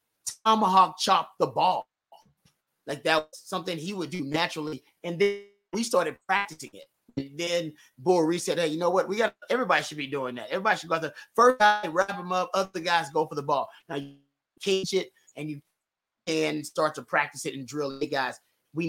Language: English